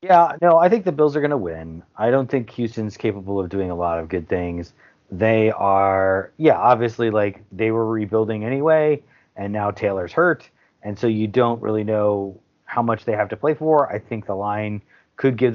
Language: English